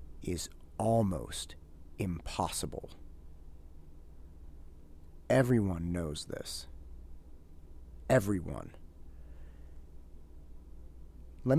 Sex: male